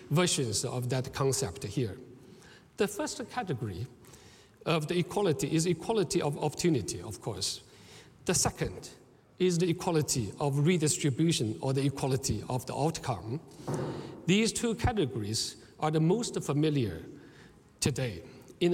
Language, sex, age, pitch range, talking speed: English, male, 60-79, 135-180 Hz, 125 wpm